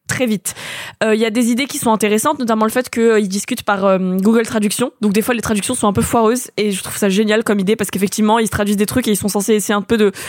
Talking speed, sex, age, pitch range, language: 305 wpm, female, 20-39, 210-255 Hz, French